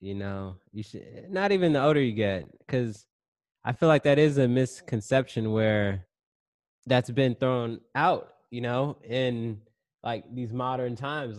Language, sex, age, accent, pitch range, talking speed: English, male, 20-39, American, 105-125 Hz, 160 wpm